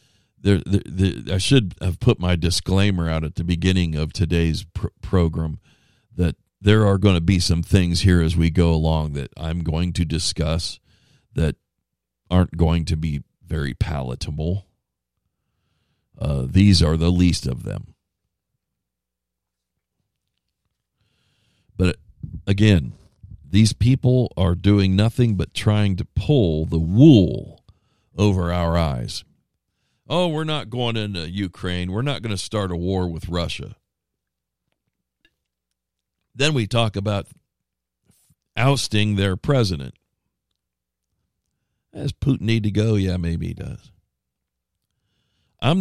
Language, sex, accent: English, male, American